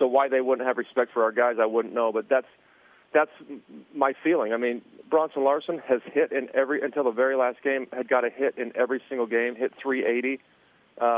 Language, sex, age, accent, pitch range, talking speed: English, male, 40-59, American, 120-135 Hz, 215 wpm